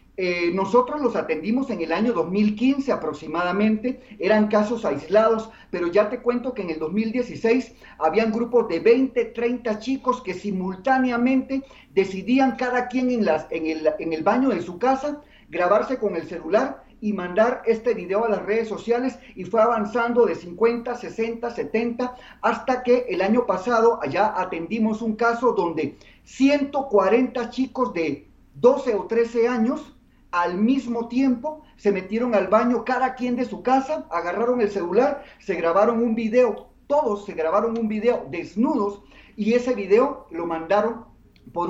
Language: Spanish